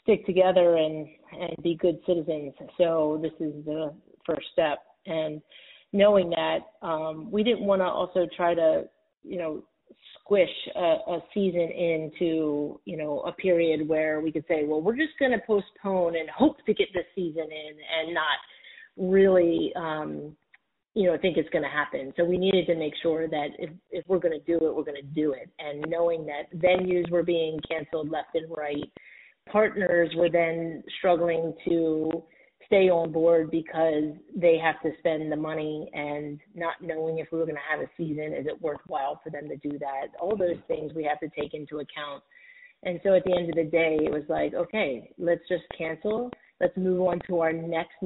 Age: 30-49